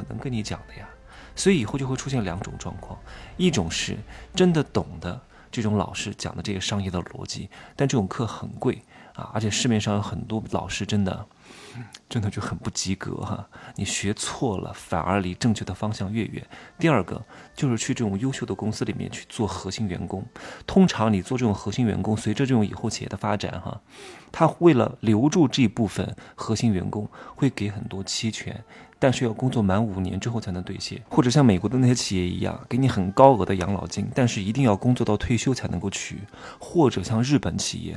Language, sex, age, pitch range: Chinese, male, 20-39, 95-125 Hz